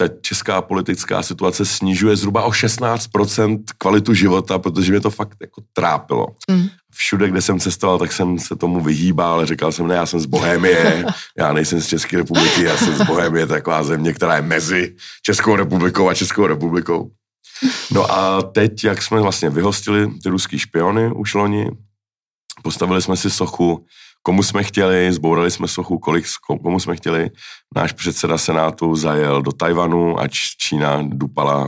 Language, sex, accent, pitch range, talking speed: Czech, male, native, 75-100 Hz, 160 wpm